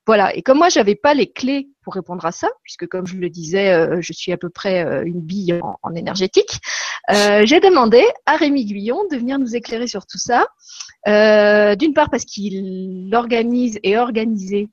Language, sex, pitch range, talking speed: French, female, 195-250 Hz, 205 wpm